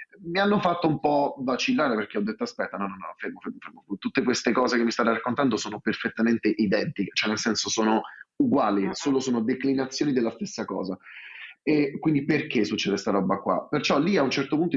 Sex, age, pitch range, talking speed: male, 30-49, 110-140 Hz, 205 wpm